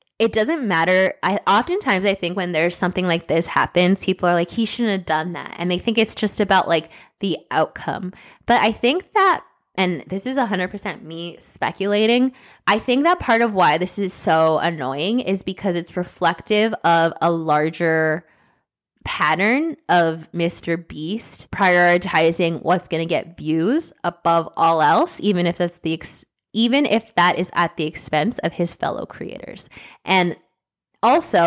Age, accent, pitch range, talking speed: 20-39, American, 165-210 Hz, 170 wpm